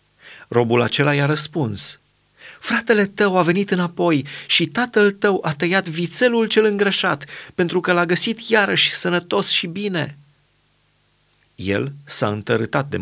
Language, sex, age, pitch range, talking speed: Romanian, male, 30-49, 135-185 Hz, 135 wpm